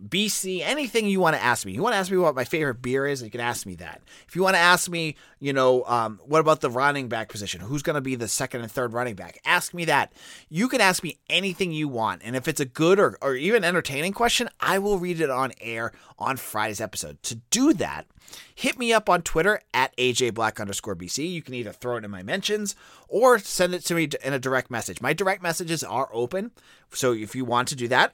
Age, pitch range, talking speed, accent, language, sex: 30-49, 120-180 Hz, 245 wpm, American, English, male